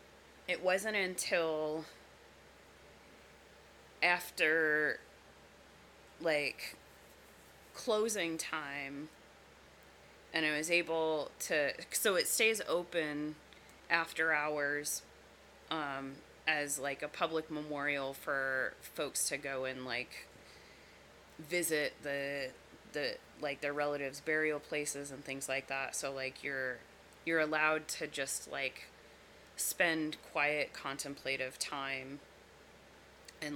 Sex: female